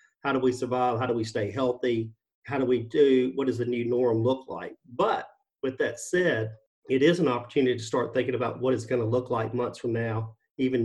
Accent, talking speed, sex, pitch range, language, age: American, 225 wpm, male, 120-140 Hz, English, 40-59